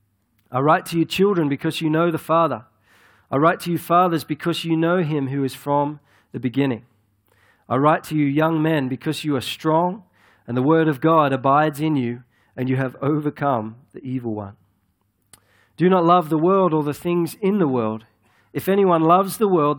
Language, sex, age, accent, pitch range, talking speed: English, male, 40-59, Australian, 110-155 Hz, 195 wpm